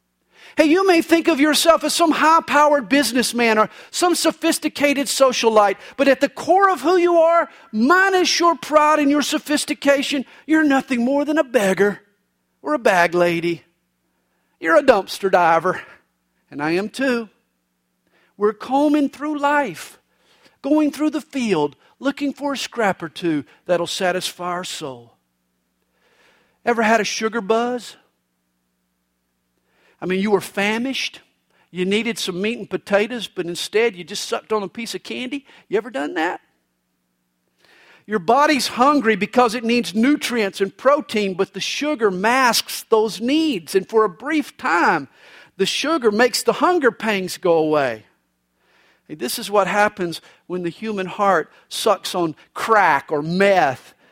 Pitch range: 175-280 Hz